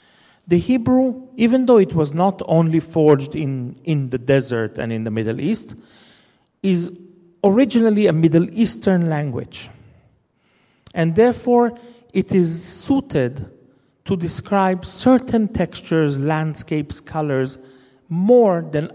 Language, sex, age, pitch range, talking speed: English, male, 40-59, 140-200 Hz, 115 wpm